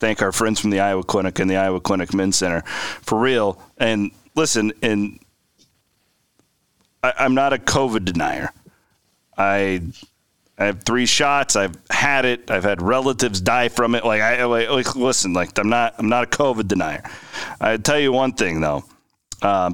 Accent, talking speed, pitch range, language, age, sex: American, 175 wpm, 100-125 Hz, English, 40-59, male